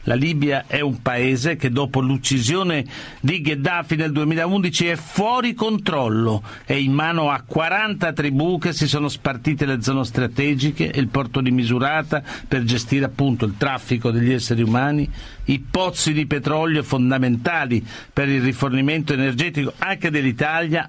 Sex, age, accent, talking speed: male, 50-69, native, 150 wpm